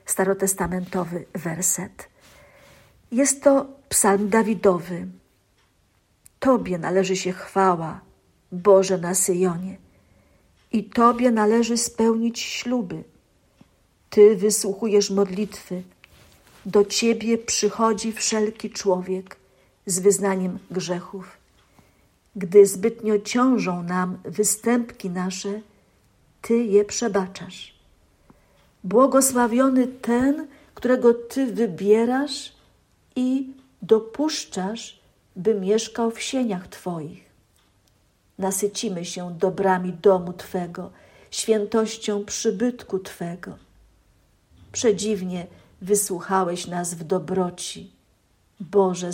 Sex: female